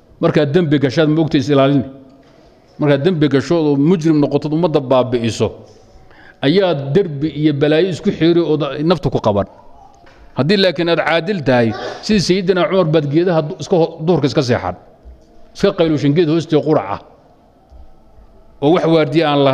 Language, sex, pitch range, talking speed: Arabic, male, 120-155 Hz, 40 wpm